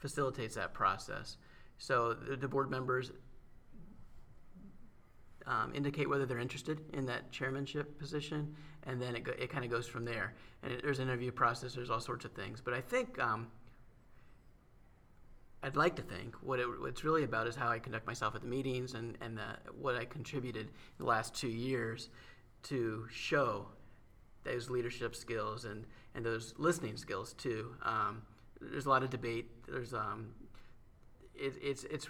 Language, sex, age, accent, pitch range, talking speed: English, male, 30-49, American, 110-130 Hz, 170 wpm